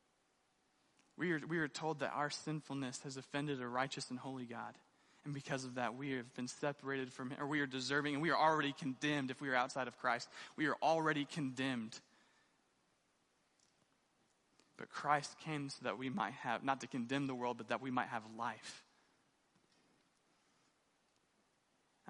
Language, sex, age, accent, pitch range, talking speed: English, male, 20-39, American, 135-170 Hz, 175 wpm